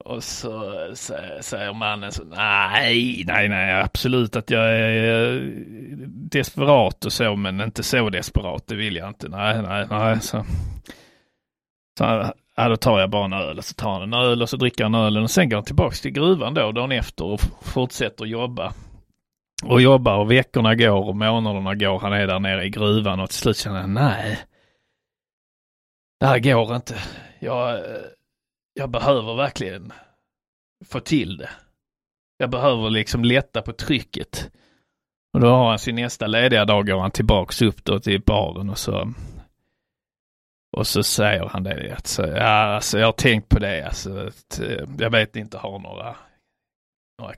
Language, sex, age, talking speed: Swedish, male, 30-49, 175 wpm